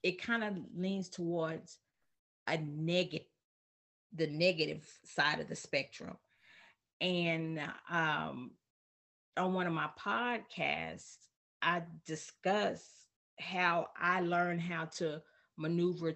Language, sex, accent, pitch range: English, female, American, 150-175 Hz